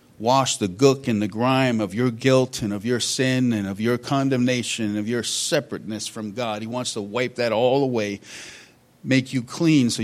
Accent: American